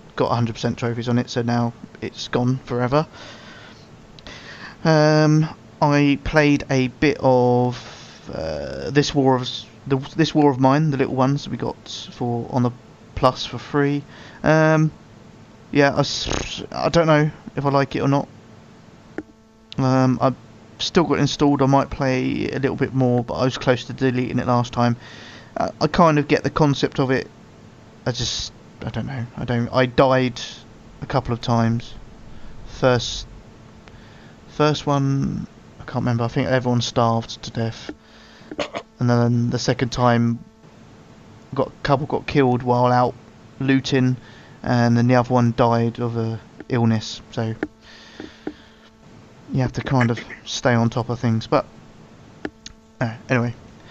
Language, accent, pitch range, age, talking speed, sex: English, British, 115-135 Hz, 20-39, 155 wpm, male